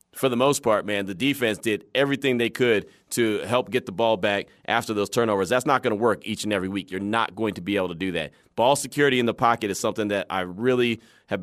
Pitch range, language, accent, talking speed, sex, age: 100-125 Hz, English, American, 255 wpm, male, 30-49